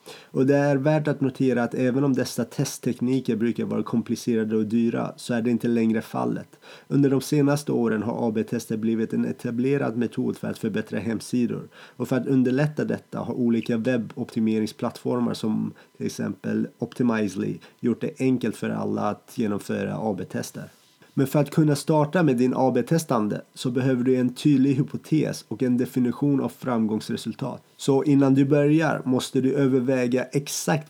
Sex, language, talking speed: male, Swedish, 160 wpm